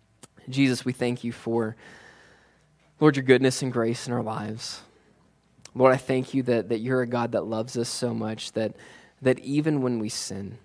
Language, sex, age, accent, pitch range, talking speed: English, male, 20-39, American, 110-135 Hz, 185 wpm